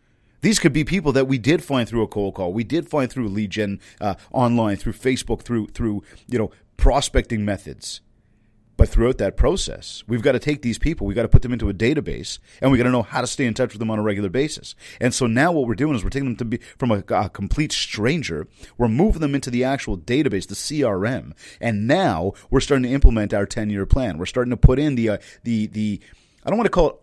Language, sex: English, male